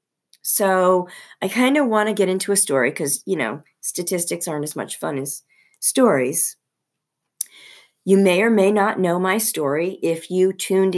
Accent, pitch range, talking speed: American, 140-185 Hz, 170 wpm